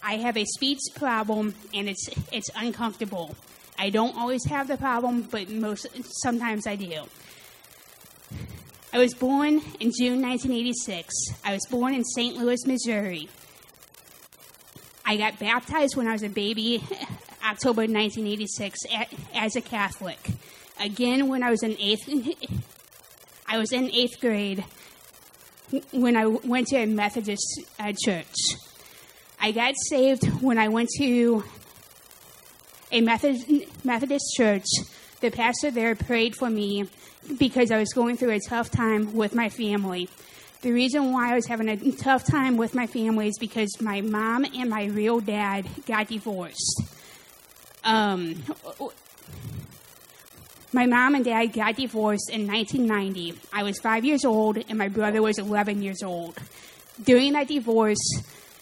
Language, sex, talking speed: English, female, 140 wpm